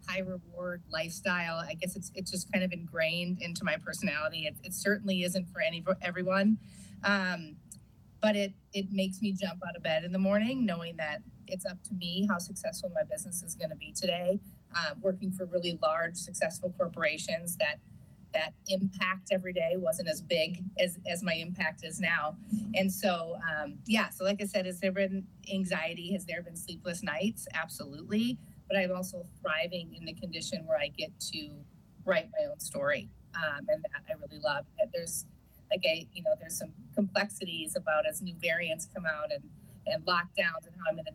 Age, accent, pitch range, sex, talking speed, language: 30-49, American, 165-200 Hz, female, 190 wpm, English